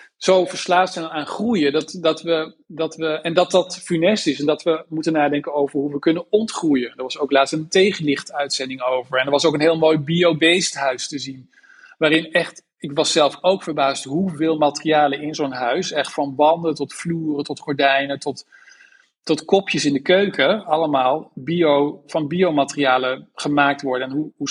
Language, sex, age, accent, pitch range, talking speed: Dutch, male, 40-59, Dutch, 145-165 Hz, 190 wpm